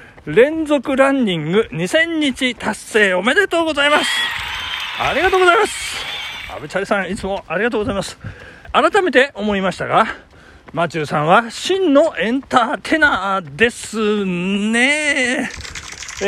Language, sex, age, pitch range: Japanese, male, 40-59, 195-295 Hz